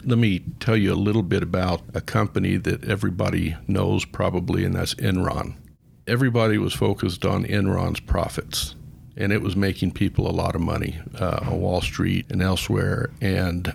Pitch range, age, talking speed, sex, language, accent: 95-115 Hz, 50-69, 170 wpm, male, English, American